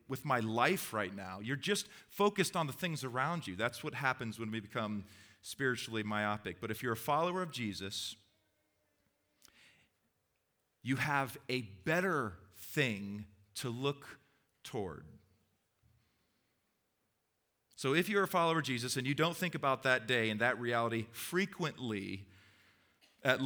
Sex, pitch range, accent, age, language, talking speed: male, 105-145 Hz, American, 40-59, English, 140 wpm